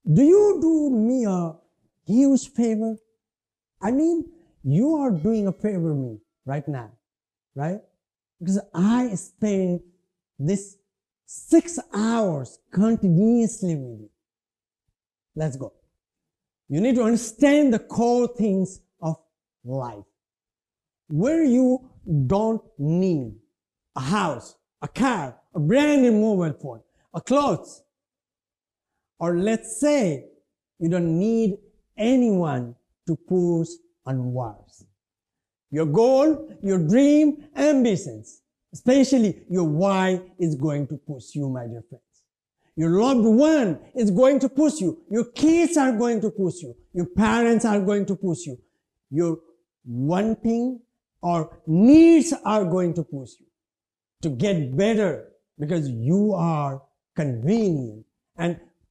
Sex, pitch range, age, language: male, 155-230 Hz, 50-69, English